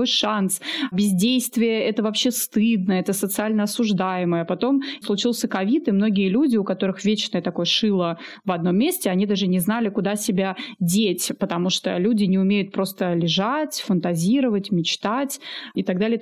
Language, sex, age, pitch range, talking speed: Russian, female, 20-39, 190-245 Hz, 155 wpm